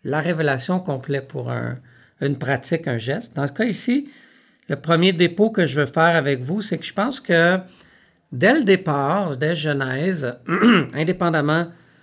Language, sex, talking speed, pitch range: French, male, 160 wpm, 135-175 Hz